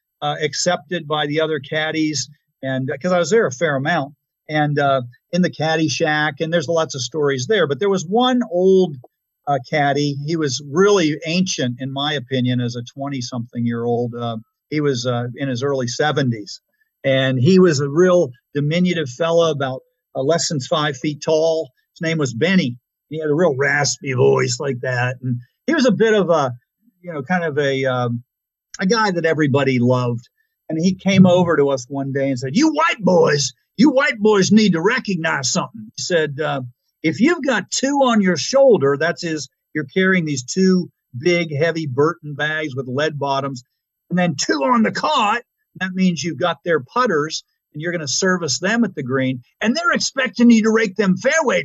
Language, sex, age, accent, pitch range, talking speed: English, male, 50-69, American, 135-185 Hz, 195 wpm